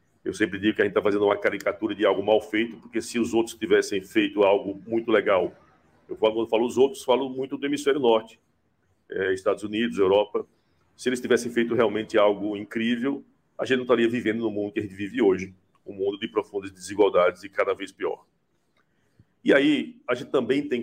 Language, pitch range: Portuguese, 105-130 Hz